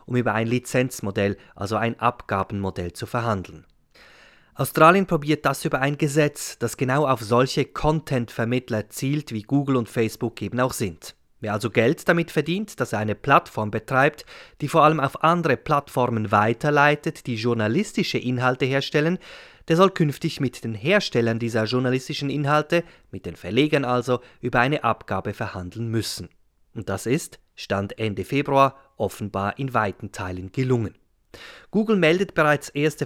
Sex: male